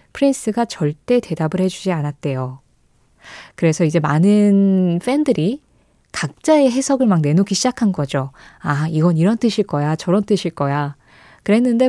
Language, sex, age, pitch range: Korean, female, 20-39, 165-245 Hz